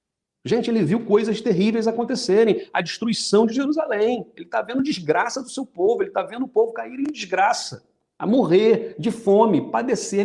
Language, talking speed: Portuguese, 175 wpm